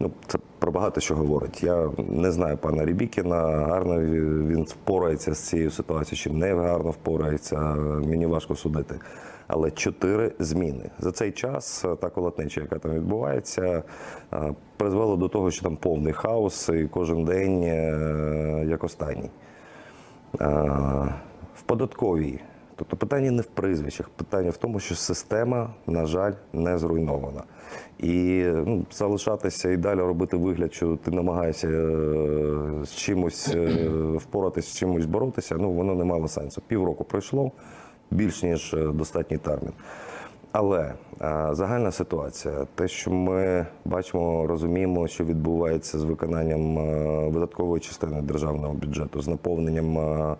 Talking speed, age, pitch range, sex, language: 130 wpm, 30-49, 75-90 Hz, male, Ukrainian